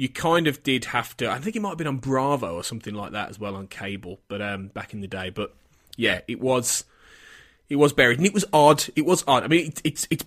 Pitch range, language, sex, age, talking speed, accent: 105-140 Hz, English, male, 20-39, 275 wpm, British